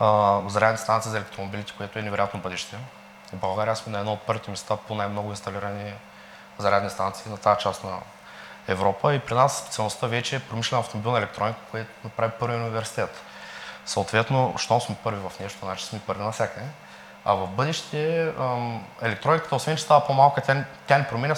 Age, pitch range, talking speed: 20-39, 105-120 Hz, 185 wpm